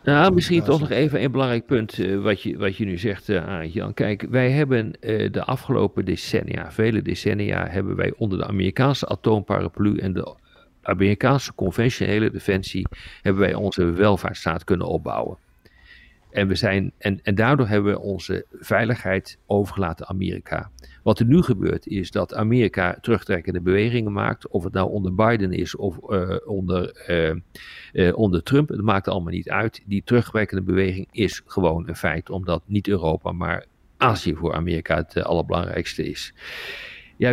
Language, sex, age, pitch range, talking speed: Dutch, male, 40-59, 90-115 Hz, 165 wpm